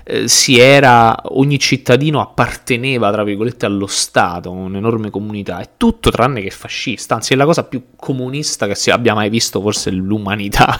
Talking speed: 160 wpm